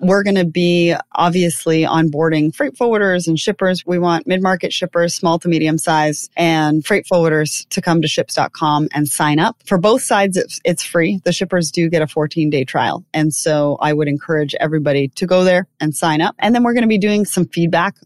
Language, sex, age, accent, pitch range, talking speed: English, female, 30-49, American, 160-195 Hz, 205 wpm